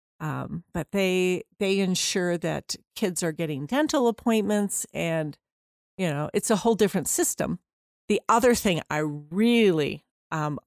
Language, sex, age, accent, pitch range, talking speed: English, female, 50-69, American, 170-210 Hz, 140 wpm